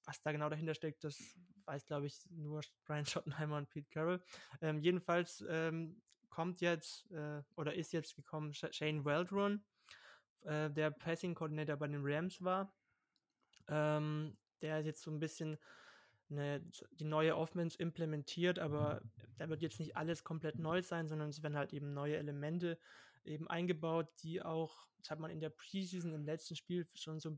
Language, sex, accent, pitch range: German, male, German, 150-170 Hz